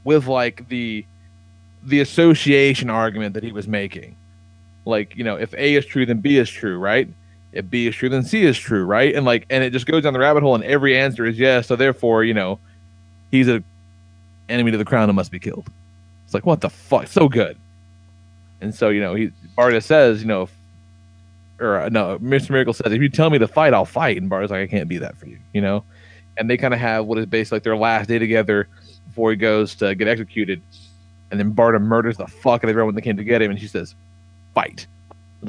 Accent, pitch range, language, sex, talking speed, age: American, 95-125 Hz, English, male, 240 wpm, 30-49